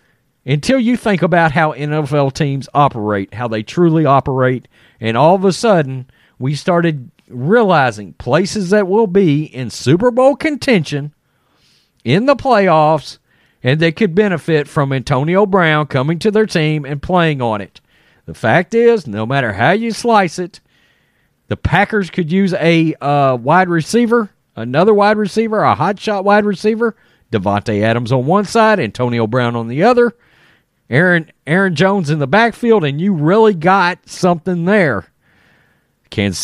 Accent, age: American, 40-59